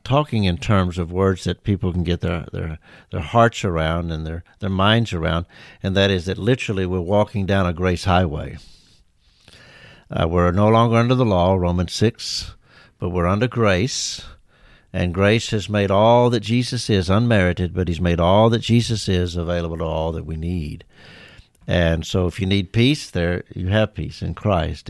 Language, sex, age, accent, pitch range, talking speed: English, male, 60-79, American, 90-110 Hz, 185 wpm